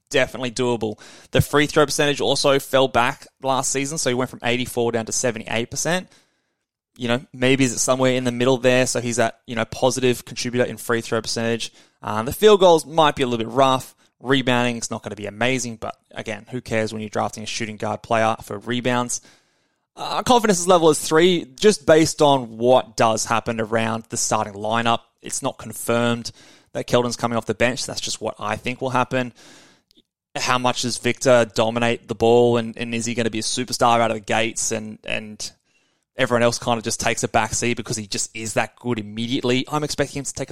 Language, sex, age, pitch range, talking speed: English, male, 20-39, 115-135 Hz, 210 wpm